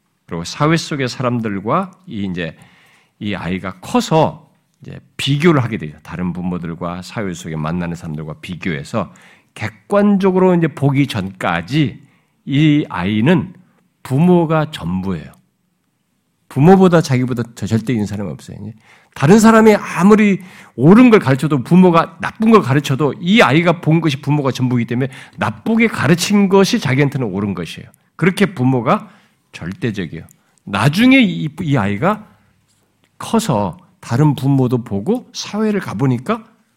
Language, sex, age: Korean, male, 50-69